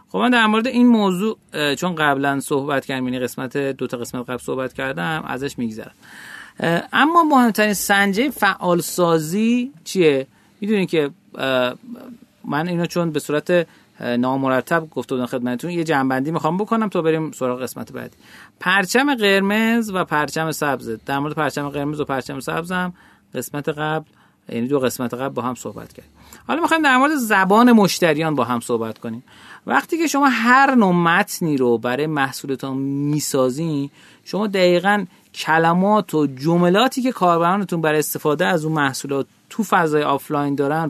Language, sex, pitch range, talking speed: Persian, male, 135-195 Hz, 155 wpm